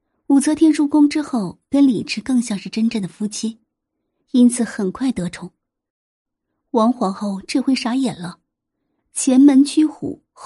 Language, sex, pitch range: Chinese, female, 200-275 Hz